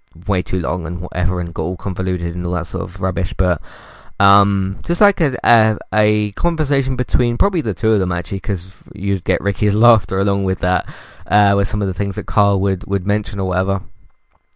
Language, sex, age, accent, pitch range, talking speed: English, male, 20-39, British, 95-115 Hz, 215 wpm